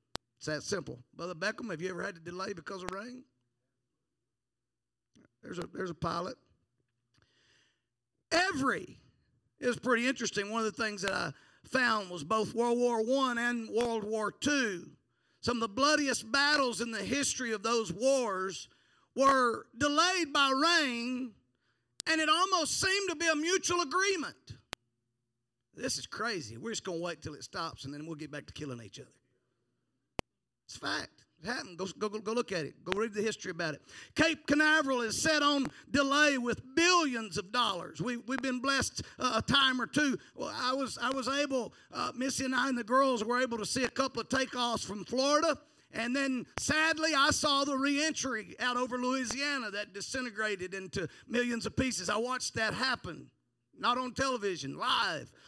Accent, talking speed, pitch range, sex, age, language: American, 180 wpm, 185-270 Hz, male, 50-69, English